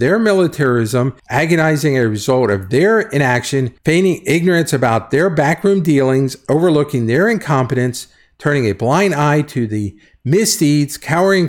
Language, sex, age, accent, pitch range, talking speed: English, male, 50-69, American, 110-145 Hz, 140 wpm